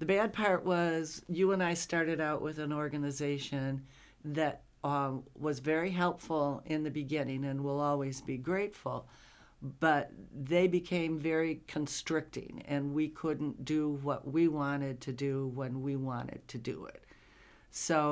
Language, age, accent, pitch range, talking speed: English, 60-79, American, 140-170 Hz, 150 wpm